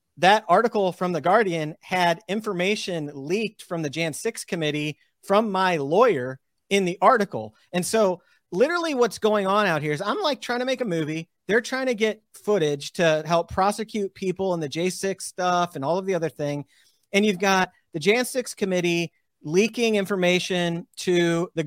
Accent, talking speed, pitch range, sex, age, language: American, 180 wpm, 155-205 Hz, male, 40-59, English